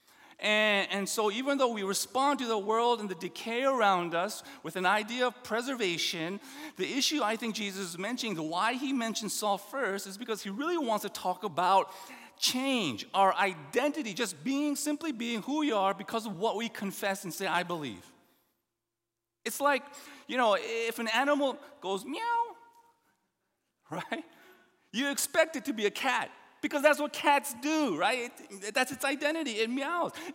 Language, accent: English, American